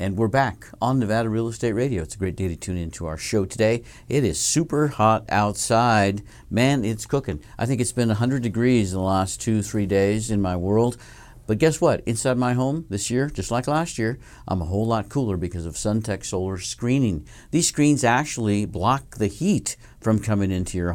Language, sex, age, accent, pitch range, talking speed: English, male, 50-69, American, 95-120 Hz, 210 wpm